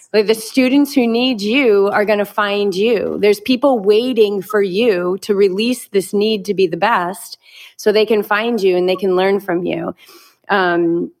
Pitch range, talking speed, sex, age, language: 190-230 Hz, 195 wpm, female, 30-49, English